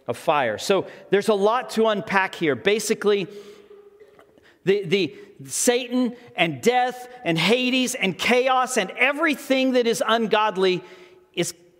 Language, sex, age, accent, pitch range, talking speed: English, male, 40-59, American, 155-215 Hz, 125 wpm